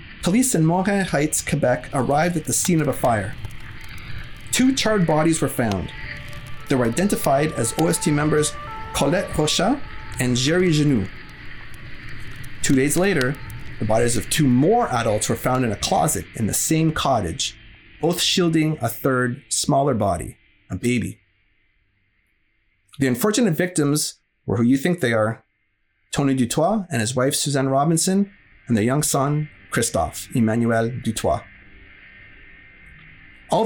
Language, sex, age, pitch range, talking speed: English, male, 30-49, 110-160 Hz, 140 wpm